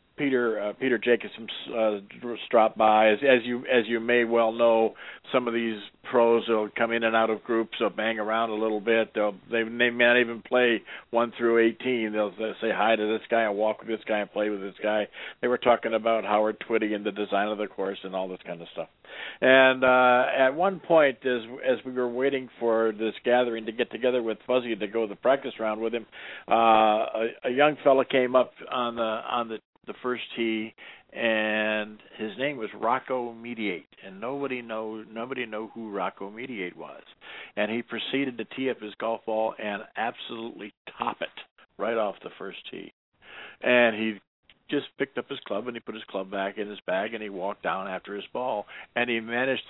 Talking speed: 215 wpm